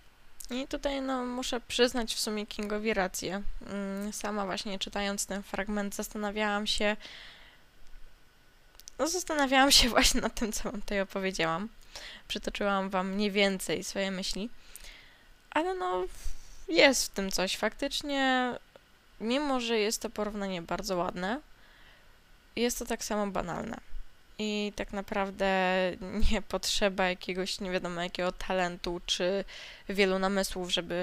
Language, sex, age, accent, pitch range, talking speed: Polish, female, 10-29, native, 190-230 Hz, 125 wpm